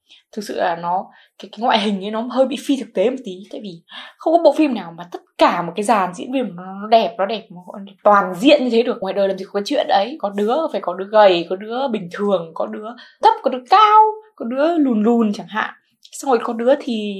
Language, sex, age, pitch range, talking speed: Vietnamese, female, 20-39, 200-250 Hz, 270 wpm